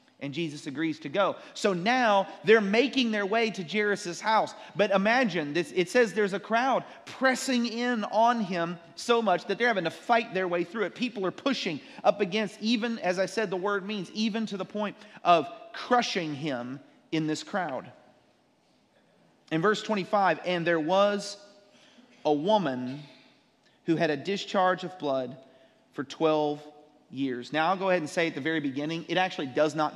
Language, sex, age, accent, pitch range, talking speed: English, male, 40-59, American, 155-210 Hz, 180 wpm